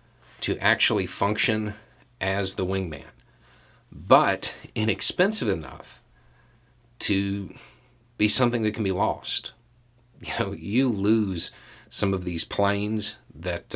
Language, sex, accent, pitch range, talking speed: English, male, American, 90-120 Hz, 110 wpm